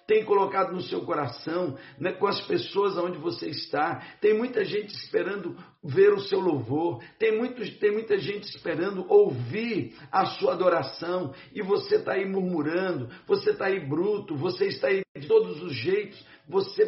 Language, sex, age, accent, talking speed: Portuguese, male, 60-79, Brazilian, 165 wpm